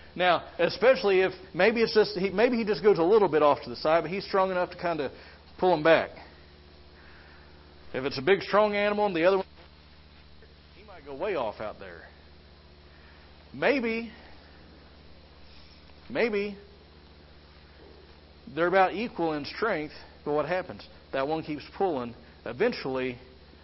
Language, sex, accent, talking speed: English, male, American, 150 wpm